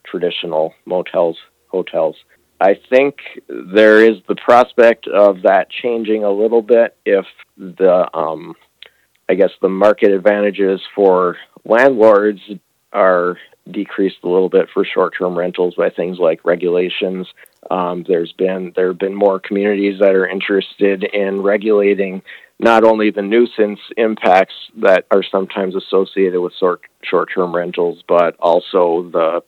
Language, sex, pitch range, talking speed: English, male, 90-105 Hz, 135 wpm